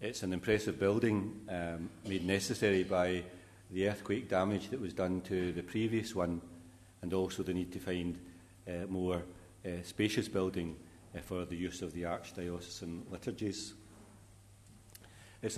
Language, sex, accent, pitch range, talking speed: English, male, British, 95-105 Hz, 145 wpm